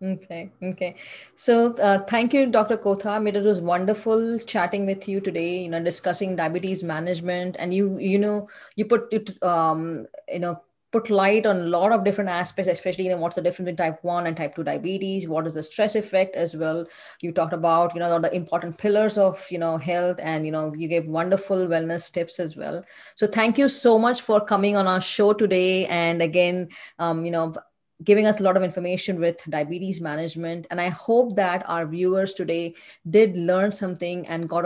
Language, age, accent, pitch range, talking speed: English, 20-39, Indian, 170-200 Hz, 205 wpm